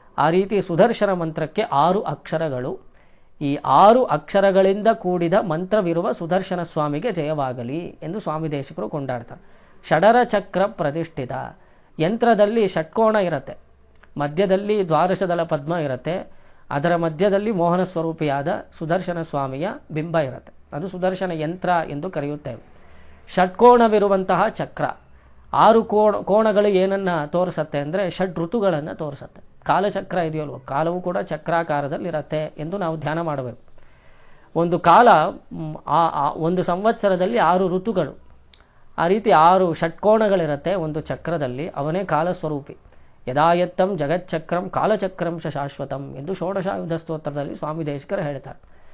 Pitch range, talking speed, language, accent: 150-190 Hz, 105 wpm, Kannada, native